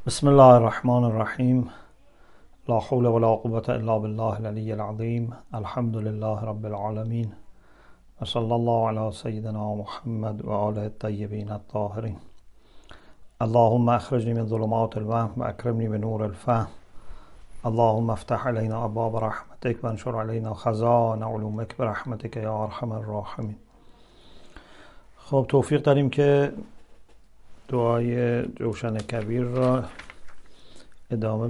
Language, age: English, 50-69